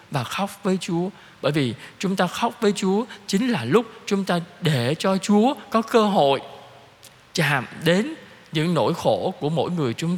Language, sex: Vietnamese, male